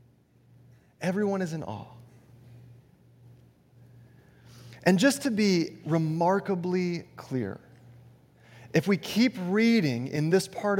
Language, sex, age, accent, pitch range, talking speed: English, male, 30-49, American, 130-205 Hz, 95 wpm